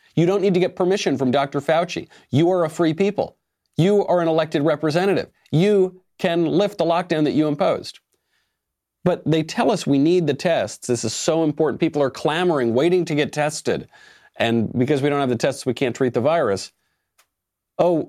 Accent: American